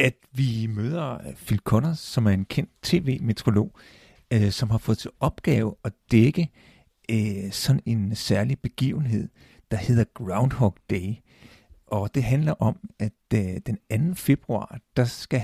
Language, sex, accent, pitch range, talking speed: Danish, male, native, 105-130 Hz, 150 wpm